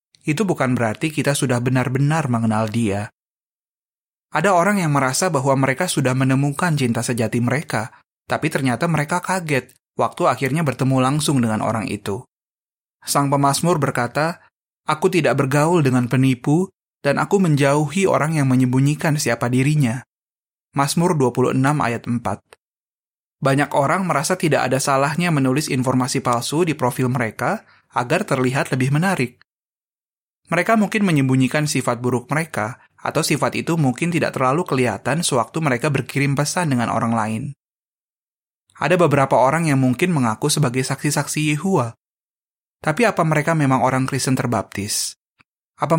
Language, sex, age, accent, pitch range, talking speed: Indonesian, male, 20-39, native, 125-160 Hz, 135 wpm